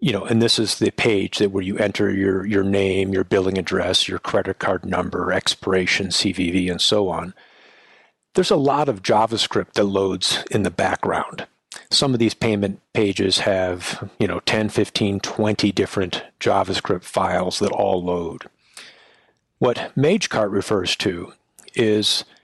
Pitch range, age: 95-115 Hz, 40-59